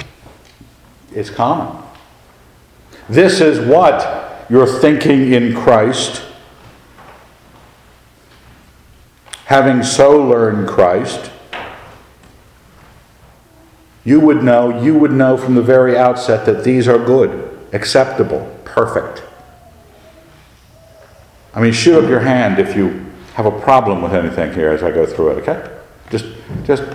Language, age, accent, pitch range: English, 60-79, American, 95-125 Hz